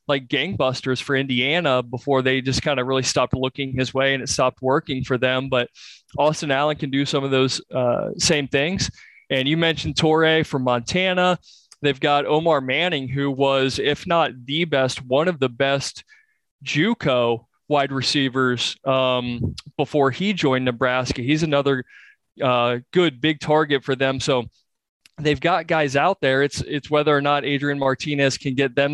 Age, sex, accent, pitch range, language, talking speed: 20-39, male, American, 130-155 Hz, English, 170 wpm